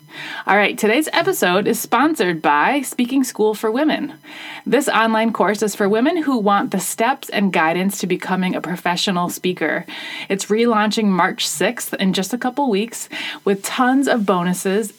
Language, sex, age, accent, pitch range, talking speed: English, female, 30-49, American, 180-235 Hz, 165 wpm